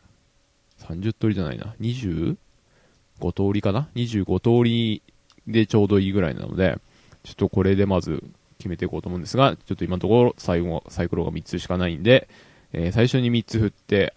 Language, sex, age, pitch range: Japanese, male, 20-39, 90-115 Hz